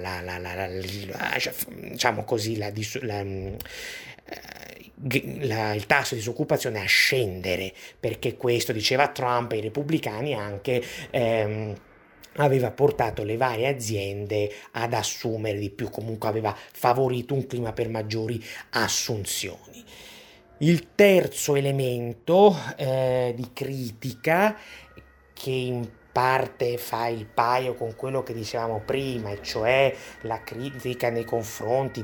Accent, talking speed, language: native, 120 wpm, Italian